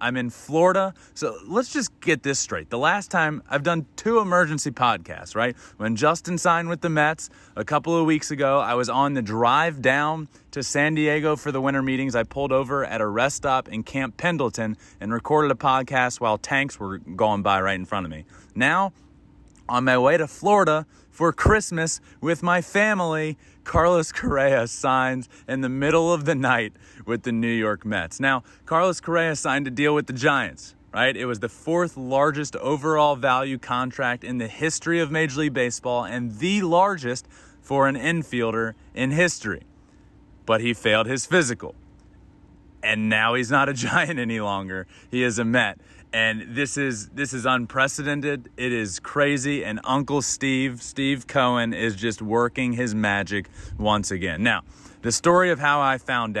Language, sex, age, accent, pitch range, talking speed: English, male, 30-49, American, 115-155 Hz, 180 wpm